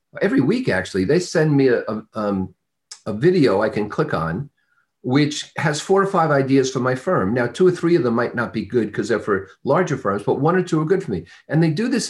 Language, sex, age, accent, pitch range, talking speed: English, male, 50-69, American, 125-165 Hz, 245 wpm